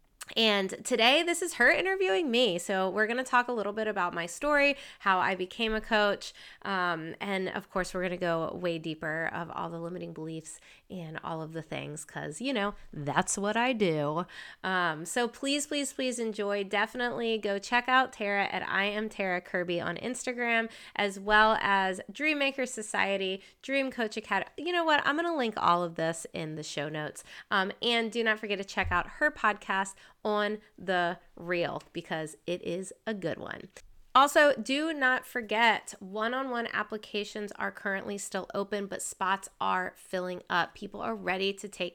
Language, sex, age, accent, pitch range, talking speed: English, female, 20-39, American, 185-225 Hz, 180 wpm